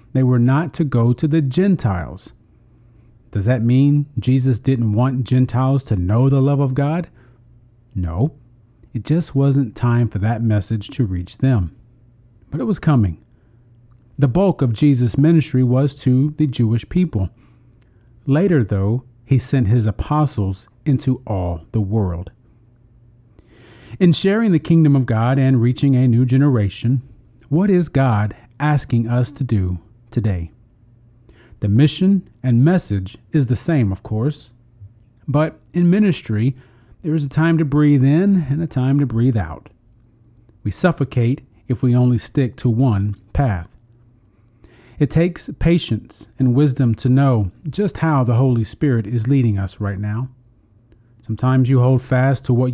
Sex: male